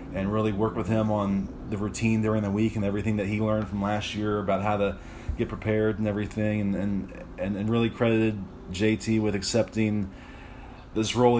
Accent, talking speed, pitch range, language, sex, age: American, 195 wpm, 100-115 Hz, English, male, 30-49